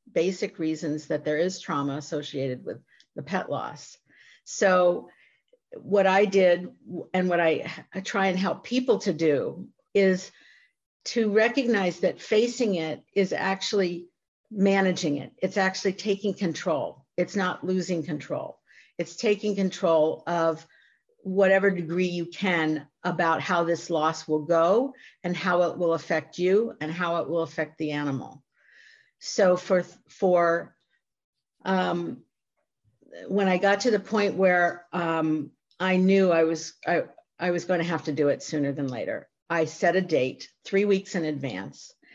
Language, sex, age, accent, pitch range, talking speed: English, female, 50-69, American, 160-190 Hz, 150 wpm